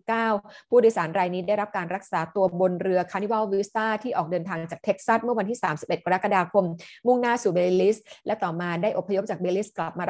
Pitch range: 180-230 Hz